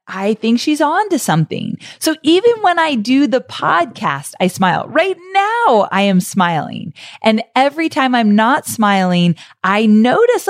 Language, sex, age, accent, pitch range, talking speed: English, female, 30-49, American, 180-265 Hz, 160 wpm